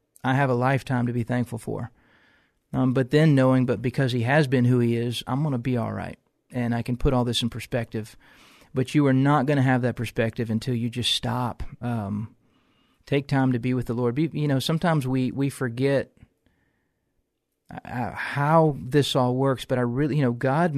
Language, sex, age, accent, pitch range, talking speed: English, male, 40-59, American, 120-140 Hz, 210 wpm